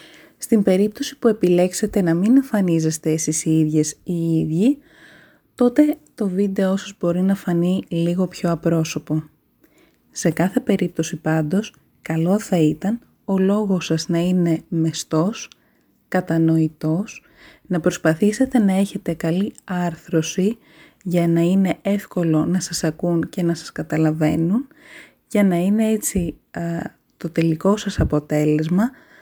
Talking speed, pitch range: 130 wpm, 160-210 Hz